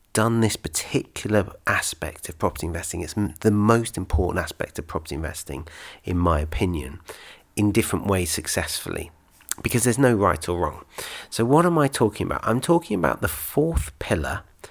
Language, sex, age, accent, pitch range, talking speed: English, male, 40-59, British, 85-105 Hz, 165 wpm